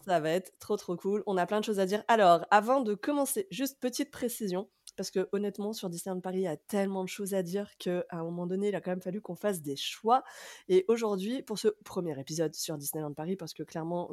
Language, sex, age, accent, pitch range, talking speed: French, female, 20-39, French, 165-210 Hz, 250 wpm